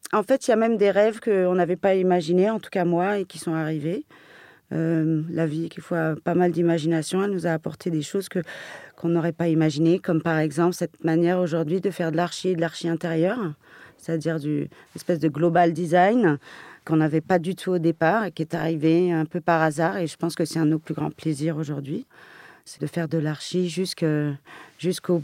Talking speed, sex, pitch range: 225 wpm, female, 160-180 Hz